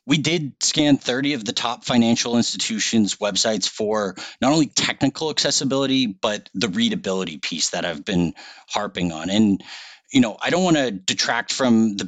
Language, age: English, 40-59